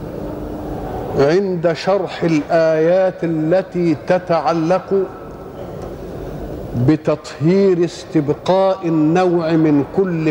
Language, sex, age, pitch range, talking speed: Arabic, male, 50-69, 155-190 Hz, 60 wpm